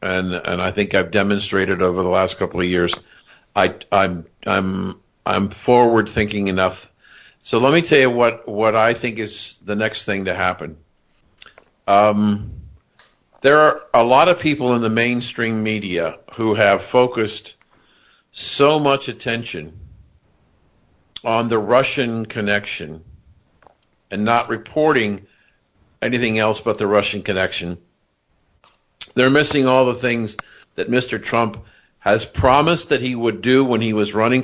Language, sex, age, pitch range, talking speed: English, male, 50-69, 100-125 Hz, 145 wpm